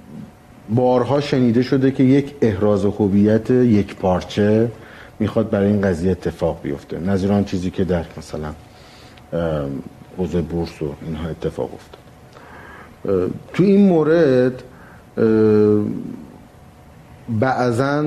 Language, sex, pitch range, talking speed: Persian, male, 95-115 Hz, 100 wpm